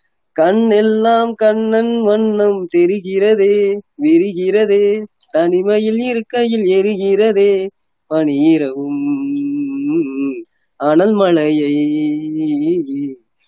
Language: Tamil